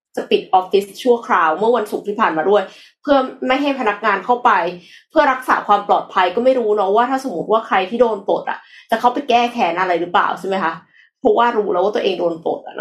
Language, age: Thai, 20-39